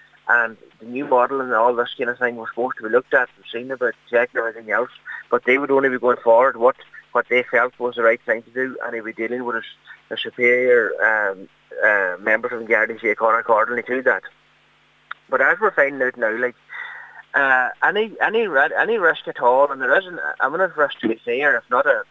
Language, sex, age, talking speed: English, male, 20-39, 225 wpm